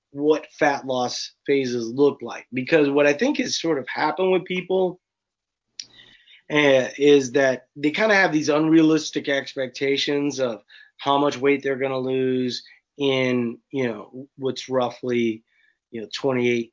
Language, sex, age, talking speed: English, male, 30-49, 150 wpm